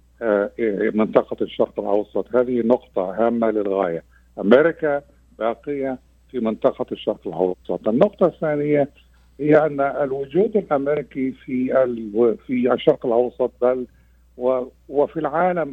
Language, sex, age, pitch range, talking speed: Arabic, male, 60-79, 105-135 Hz, 90 wpm